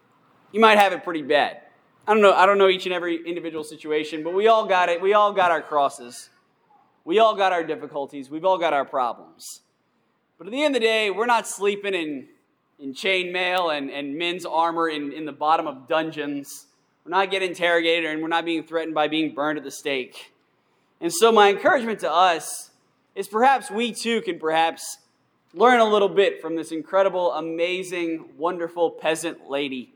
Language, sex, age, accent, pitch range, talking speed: English, male, 20-39, American, 155-200 Hz, 200 wpm